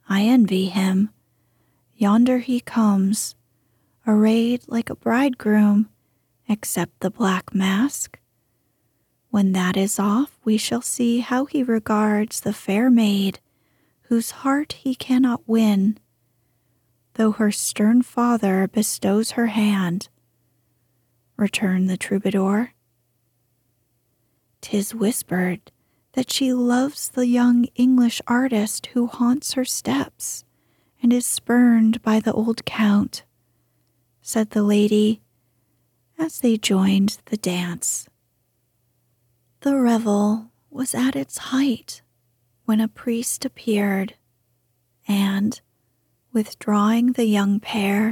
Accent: American